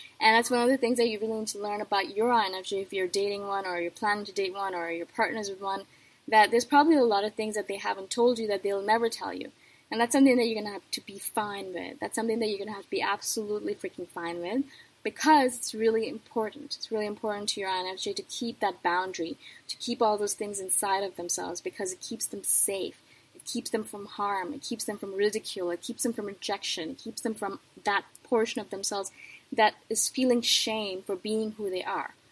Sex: female